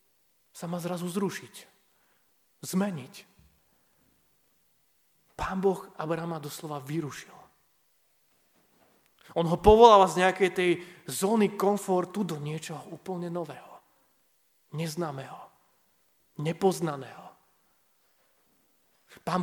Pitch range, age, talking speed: 160-200 Hz, 30-49, 75 wpm